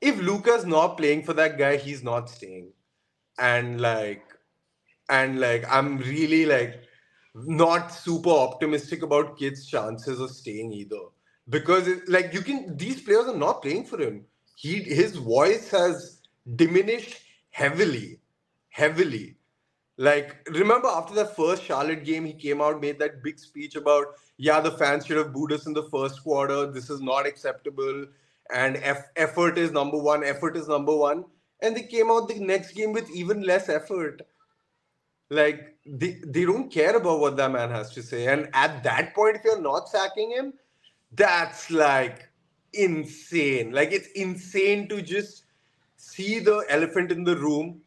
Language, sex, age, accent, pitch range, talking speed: English, male, 20-39, Indian, 145-180 Hz, 165 wpm